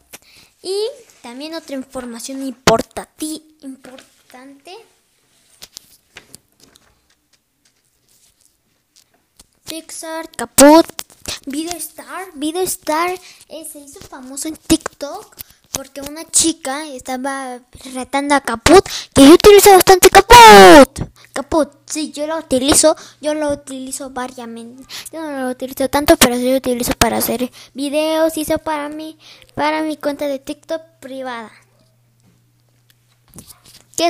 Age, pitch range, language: 10-29, 255-320 Hz, Spanish